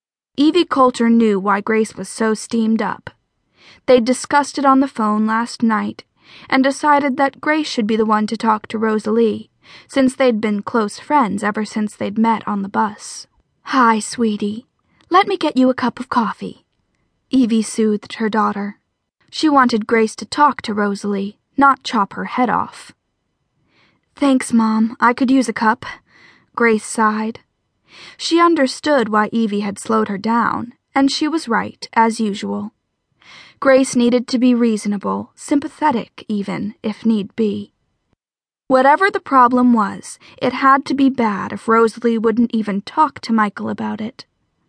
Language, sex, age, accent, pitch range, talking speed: English, female, 10-29, American, 215-270 Hz, 160 wpm